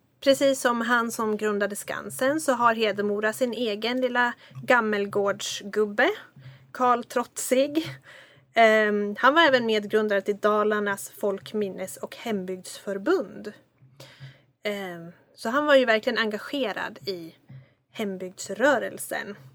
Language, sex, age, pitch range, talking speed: Swedish, female, 30-49, 150-250 Hz, 105 wpm